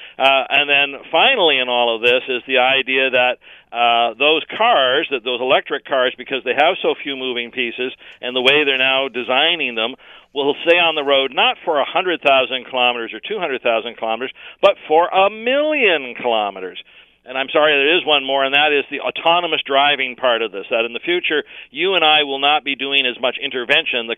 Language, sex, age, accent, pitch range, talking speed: English, male, 50-69, American, 130-170 Hz, 200 wpm